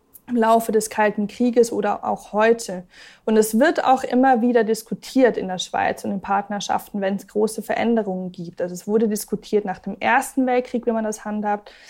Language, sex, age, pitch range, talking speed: German, female, 20-39, 210-265 Hz, 190 wpm